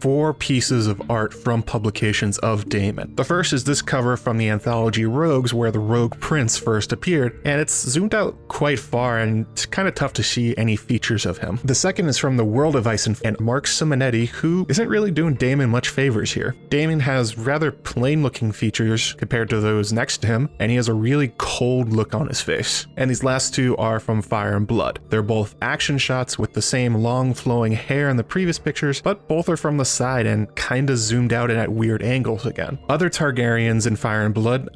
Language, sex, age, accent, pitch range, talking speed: English, male, 20-39, American, 110-140 Hz, 210 wpm